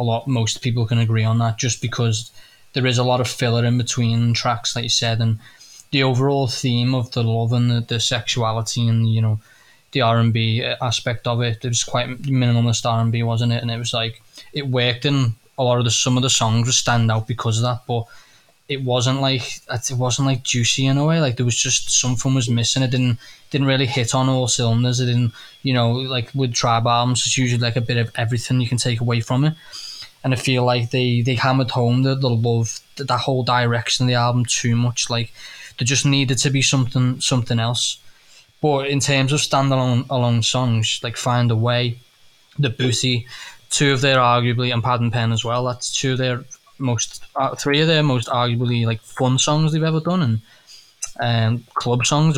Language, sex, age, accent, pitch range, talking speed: English, male, 10-29, British, 115-130 Hz, 215 wpm